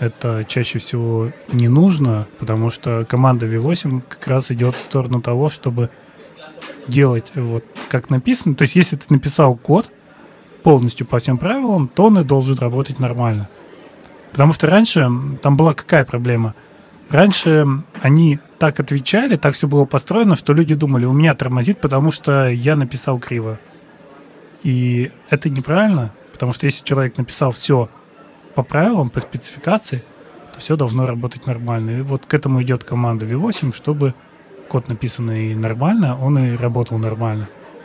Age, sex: 20-39, male